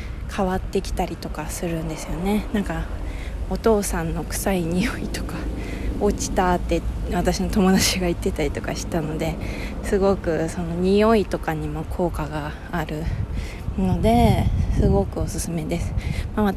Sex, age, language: female, 20-39, Japanese